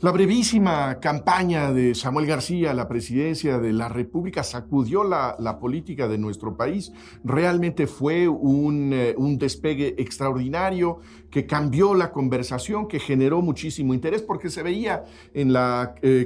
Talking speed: 145 wpm